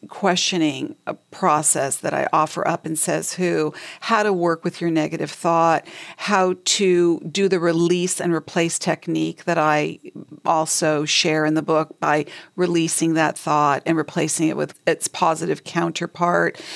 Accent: American